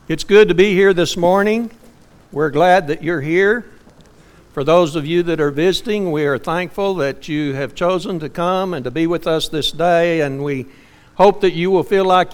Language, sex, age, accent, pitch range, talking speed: English, male, 60-79, American, 135-215 Hz, 210 wpm